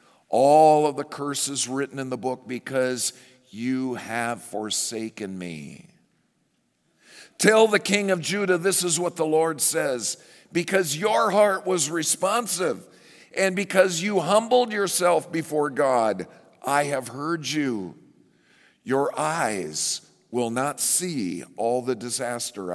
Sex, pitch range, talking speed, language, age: male, 125-195 Hz, 125 wpm, English, 50-69